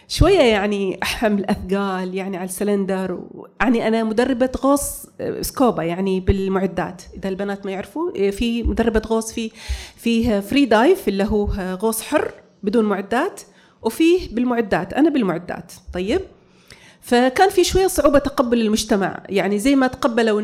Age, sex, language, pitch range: 30-49, female, Arabic, 195-260 Hz